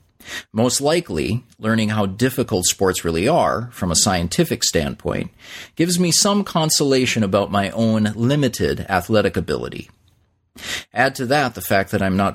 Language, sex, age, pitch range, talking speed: English, male, 40-59, 100-130 Hz, 145 wpm